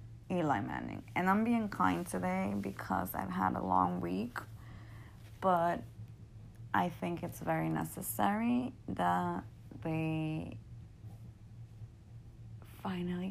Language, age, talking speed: English, 20-39, 100 wpm